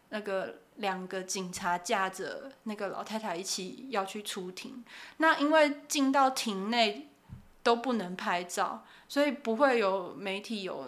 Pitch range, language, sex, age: 200-245 Hz, Chinese, female, 20-39